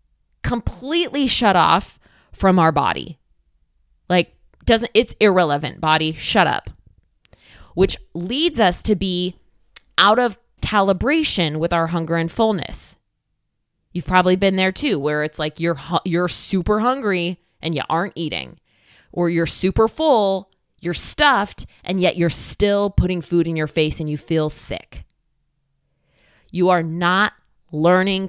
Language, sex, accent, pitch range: English, female, American, 155-200 Hz